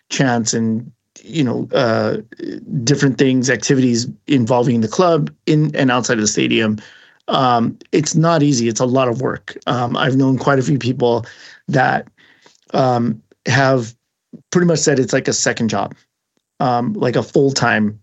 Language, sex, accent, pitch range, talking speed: English, male, American, 125-150 Hz, 160 wpm